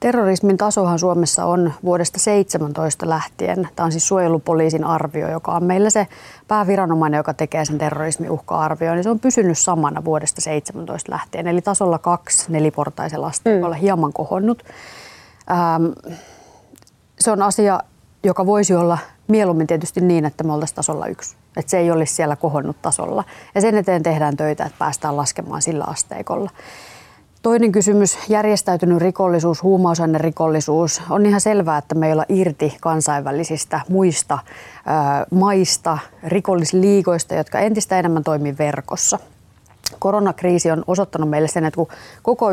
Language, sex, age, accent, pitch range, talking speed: Finnish, female, 30-49, native, 155-190 Hz, 135 wpm